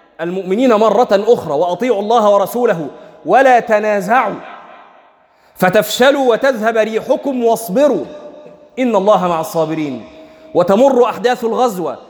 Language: Arabic